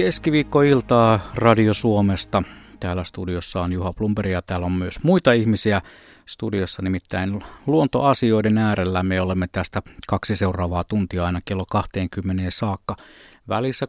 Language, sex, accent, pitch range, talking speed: Finnish, male, native, 95-125 Hz, 125 wpm